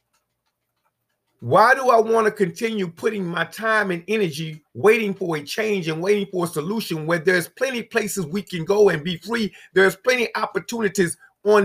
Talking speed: 185 wpm